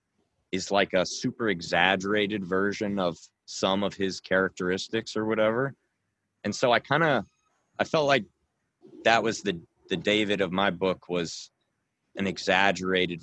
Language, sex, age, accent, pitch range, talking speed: English, male, 20-39, American, 90-110 Hz, 145 wpm